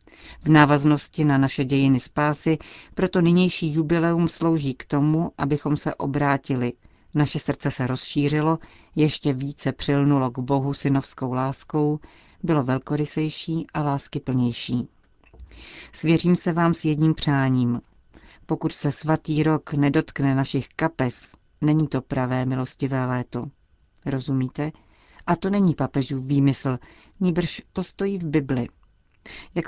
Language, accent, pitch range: Czech, native, 135-160 Hz